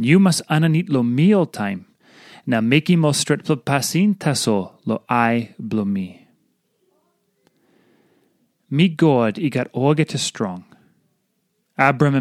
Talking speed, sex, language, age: 140 wpm, male, English, 30-49